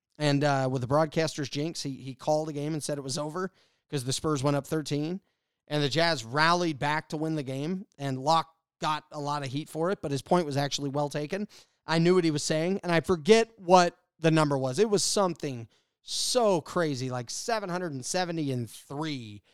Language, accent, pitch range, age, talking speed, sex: English, American, 135-175 Hz, 30-49, 205 wpm, male